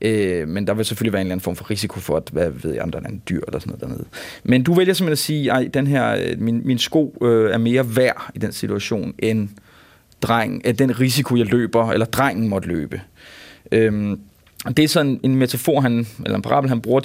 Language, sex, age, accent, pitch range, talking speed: Danish, male, 30-49, native, 110-135 Hz, 220 wpm